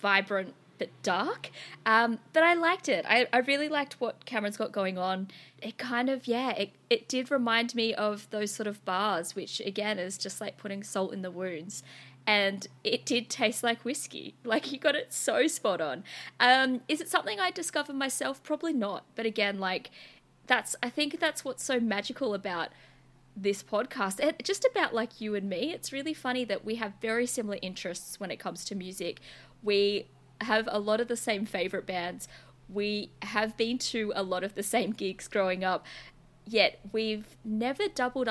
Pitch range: 200-265 Hz